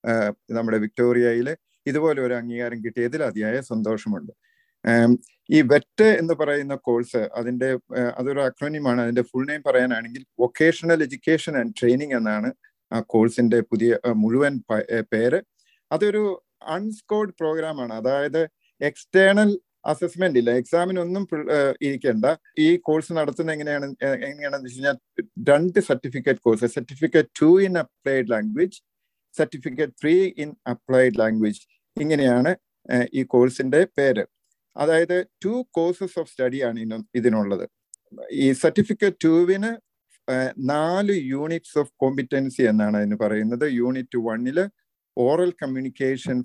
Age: 50-69